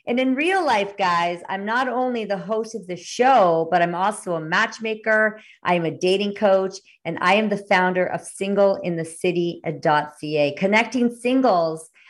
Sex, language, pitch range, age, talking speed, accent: female, English, 165-220 Hz, 50-69, 160 wpm, American